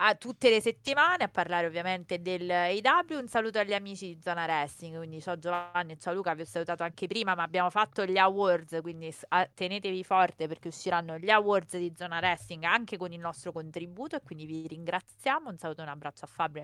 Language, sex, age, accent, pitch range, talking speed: Italian, female, 30-49, native, 170-220 Hz, 210 wpm